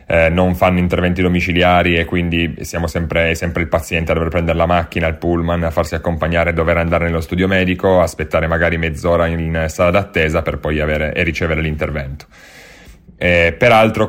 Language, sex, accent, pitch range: Italian, male, native, 85-95 Hz